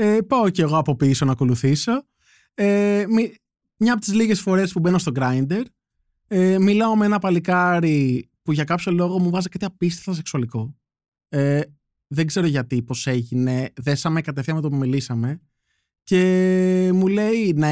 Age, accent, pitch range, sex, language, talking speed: 20-39, native, 145-195 Hz, male, Greek, 160 wpm